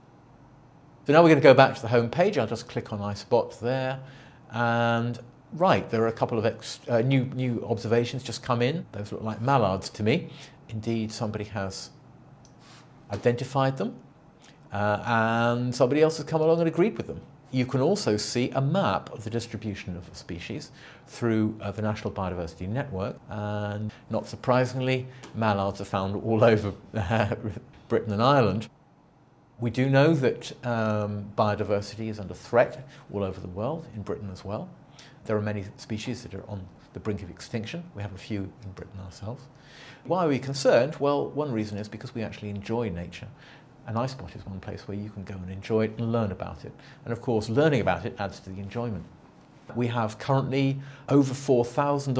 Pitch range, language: 105-135 Hz, English